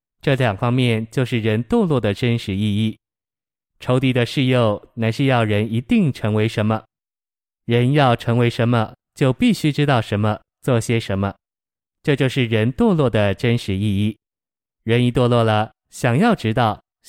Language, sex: Chinese, male